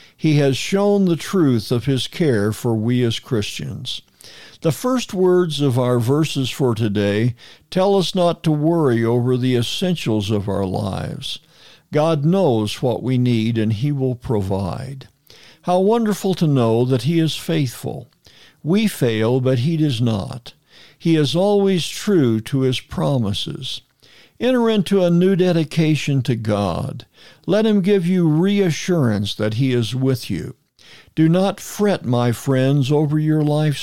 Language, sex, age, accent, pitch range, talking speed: English, male, 60-79, American, 120-170 Hz, 155 wpm